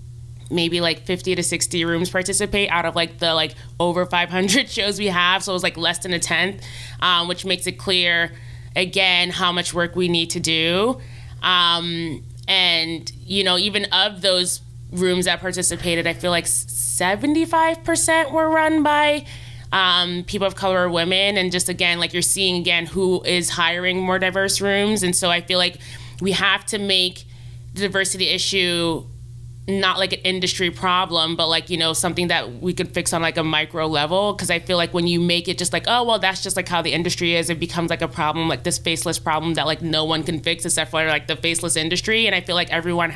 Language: English